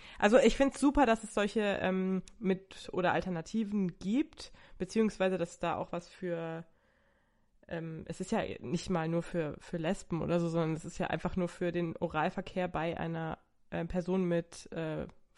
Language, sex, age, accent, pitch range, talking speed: German, female, 20-39, German, 175-200 Hz, 180 wpm